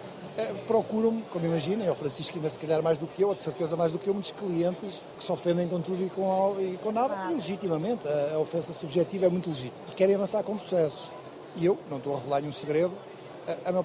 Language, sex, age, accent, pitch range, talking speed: Portuguese, male, 50-69, Portuguese, 160-195 Hz, 245 wpm